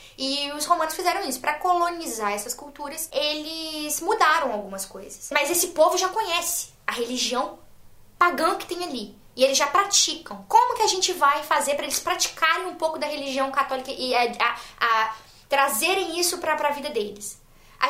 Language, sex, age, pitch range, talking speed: Portuguese, female, 10-29, 245-335 Hz, 170 wpm